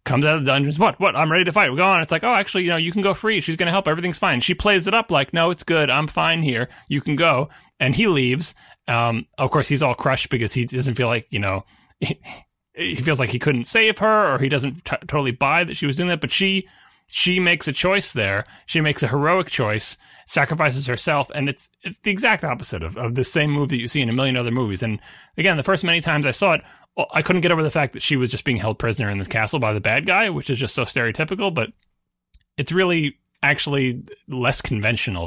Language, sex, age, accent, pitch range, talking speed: English, male, 30-49, American, 125-170 Hz, 255 wpm